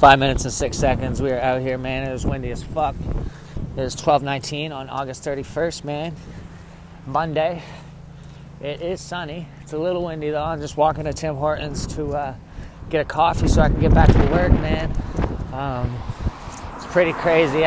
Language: English